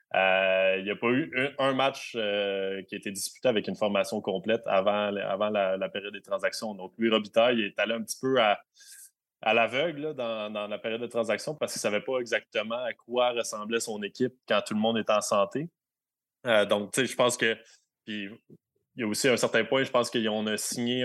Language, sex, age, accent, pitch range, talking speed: French, male, 20-39, Canadian, 105-125 Hz, 225 wpm